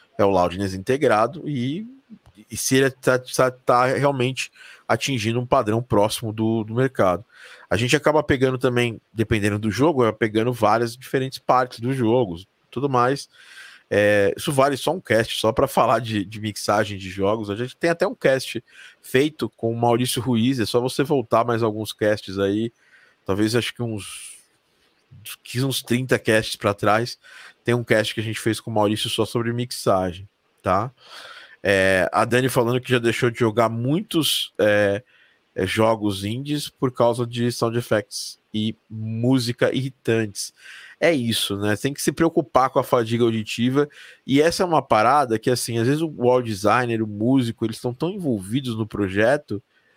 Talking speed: 175 wpm